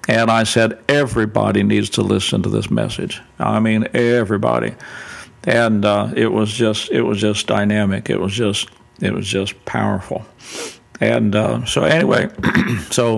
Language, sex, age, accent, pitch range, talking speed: English, male, 50-69, American, 105-120 Hz, 155 wpm